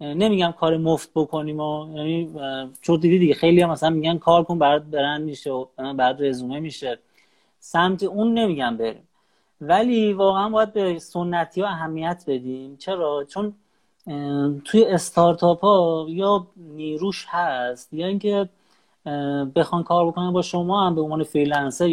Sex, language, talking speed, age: male, Persian, 150 wpm, 30-49